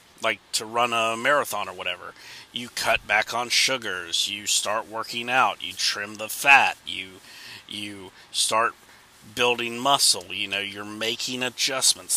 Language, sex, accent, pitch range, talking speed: English, male, American, 95-115 Hz, 150 wpm